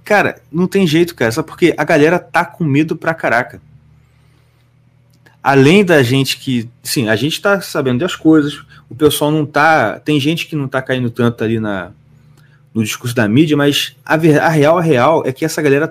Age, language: 30-49, Portuguese